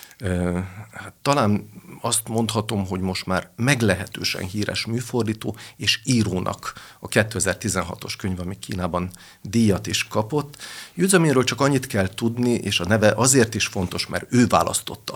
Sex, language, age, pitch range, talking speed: male, Hungarian, 50-69, 95-120 Hz, 135 wpm